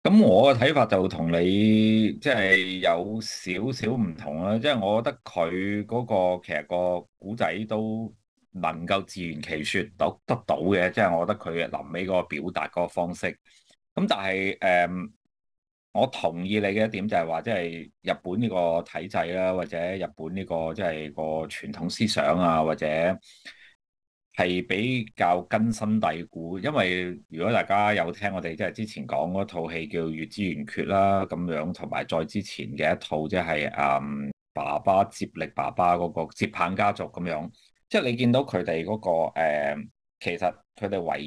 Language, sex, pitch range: Chinese, male, 80-105 Hz